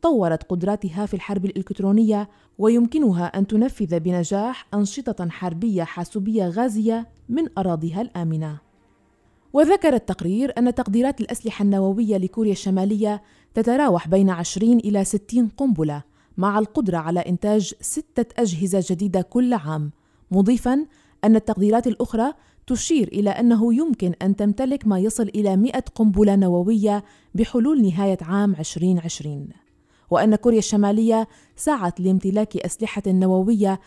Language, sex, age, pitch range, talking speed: Arabic, female, 20-39, 185-230 Hz, 115 wpm